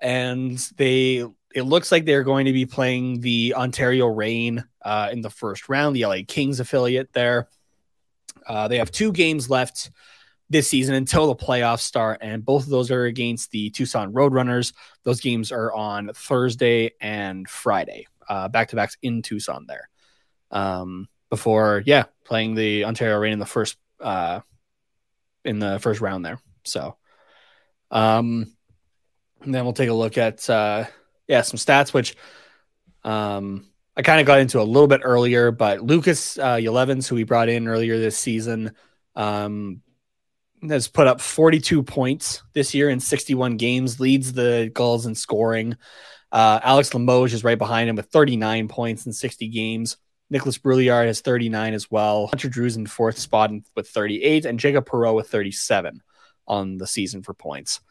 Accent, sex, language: American, male, English